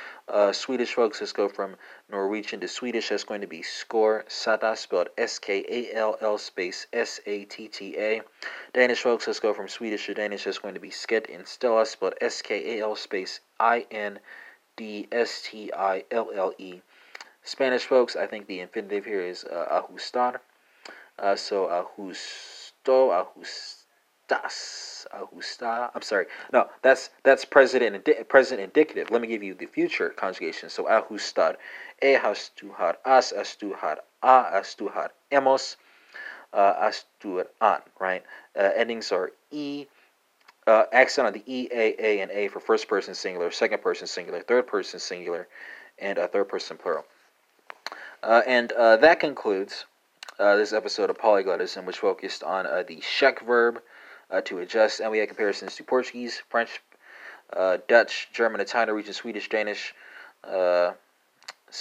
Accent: American